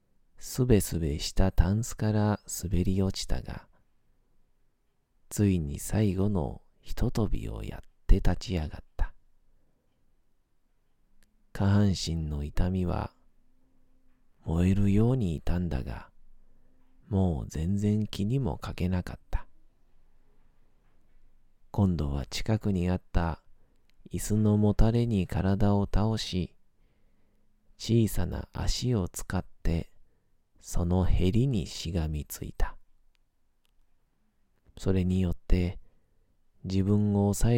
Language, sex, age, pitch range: Japanese, male, 40-59, 85-105 Hz